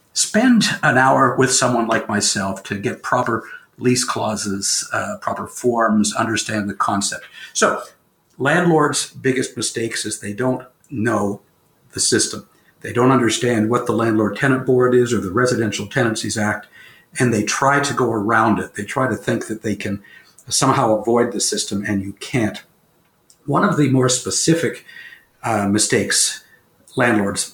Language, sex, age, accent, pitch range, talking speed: English, male, 60-79, American, 105-130 Hz, 155 wpm